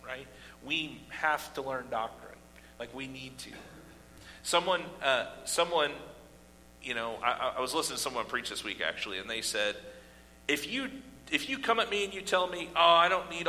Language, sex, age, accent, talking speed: English, male, 40-59, American, 185 wpm